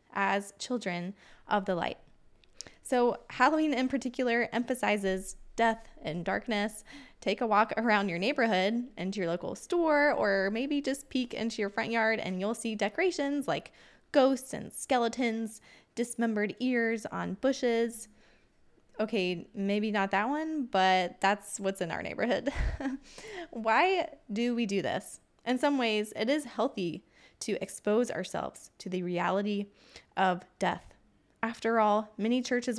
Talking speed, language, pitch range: 140 wpm, English, 200-245 Hz